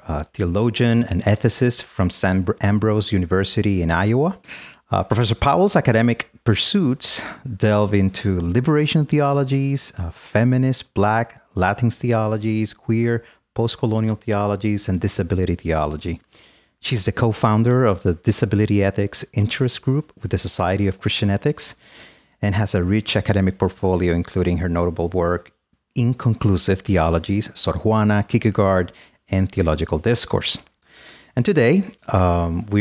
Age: 30-49